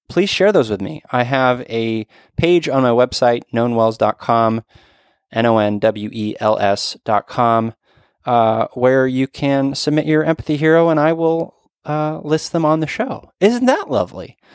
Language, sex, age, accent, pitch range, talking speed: English, male, 20-39, American, 115-170 Hz, 150 wpm